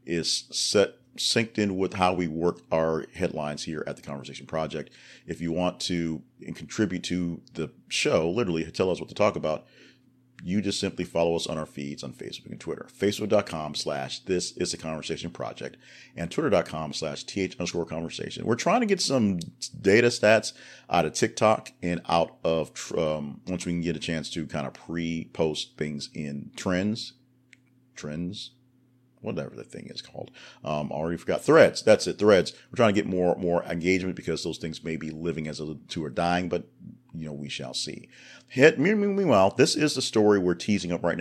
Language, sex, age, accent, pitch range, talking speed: English, male, 40-59, American, 80-105 Hz, 190 wpm